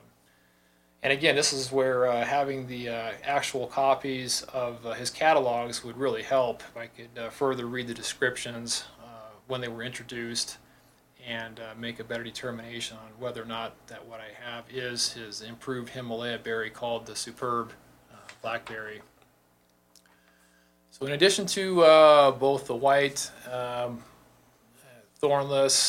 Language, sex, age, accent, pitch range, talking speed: English, male, 40-59, American, 115-130 Hz, 150 wpm